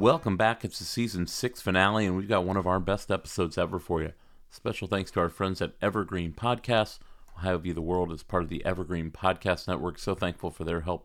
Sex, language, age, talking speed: male, English, 30-49, 230 wpm